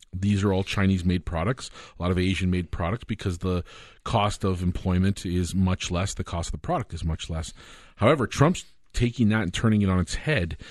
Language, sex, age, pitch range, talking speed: English, male, 40-59, 90-110 Hz, 200 wpm